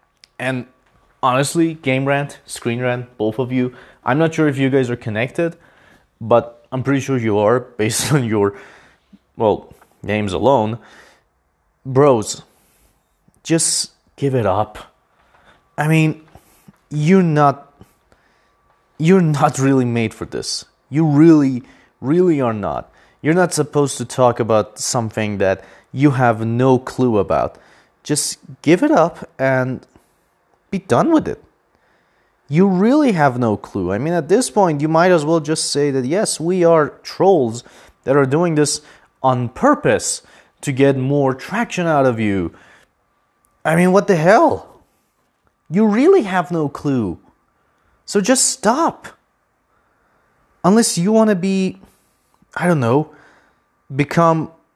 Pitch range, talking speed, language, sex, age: 125-175 Hz, 140 wpm, English, male, 30-49